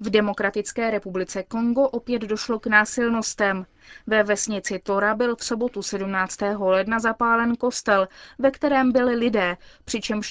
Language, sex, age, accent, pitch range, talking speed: Czech, female, 20-39, native, 200-245 Hz, 135 wpm